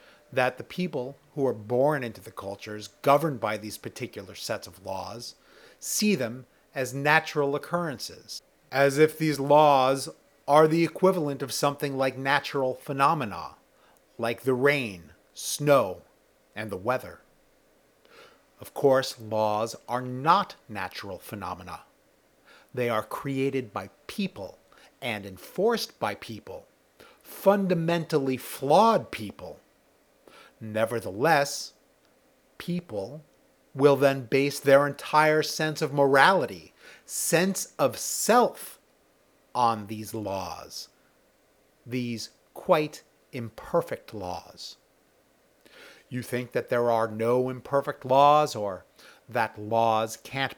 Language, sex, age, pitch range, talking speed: English, male, 30-49, 120-150 Hz, 110 wpm